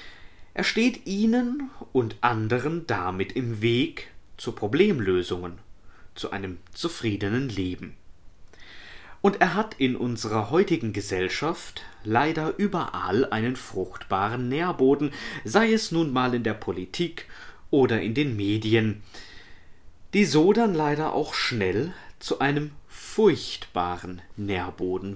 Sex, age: male, 30-49